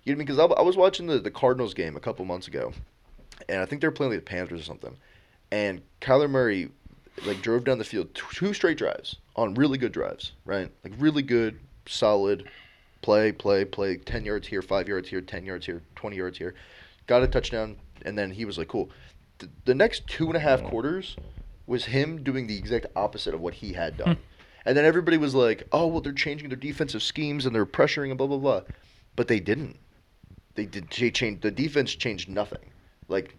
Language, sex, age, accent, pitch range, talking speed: English, male, 20-39, American, 95-140 Hz, 215 wpm